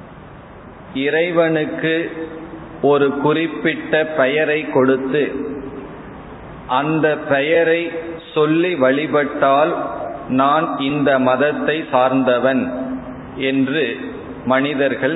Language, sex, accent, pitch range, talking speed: Tamil, male, native, 130-155 Hz, 60 wpm